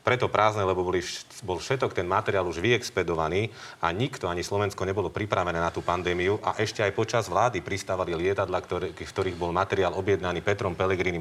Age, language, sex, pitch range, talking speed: 40-59, Slovak, male, 95-115 Hz, 175 wpm